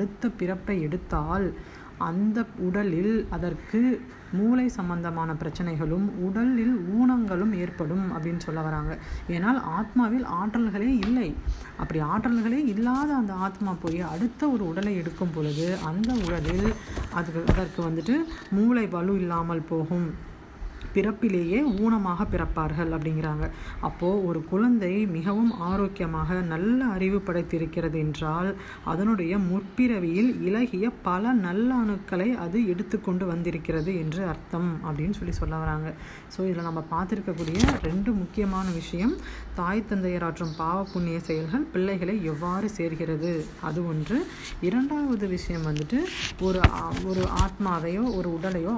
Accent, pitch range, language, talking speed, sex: native, 165-215 Hz, Tamil, 110 wpm, female